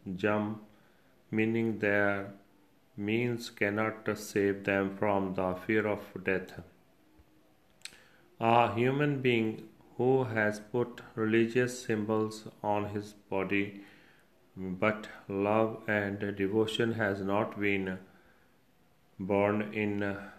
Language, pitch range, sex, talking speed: Punjabi, 100-115 Hz, male, 95 wpm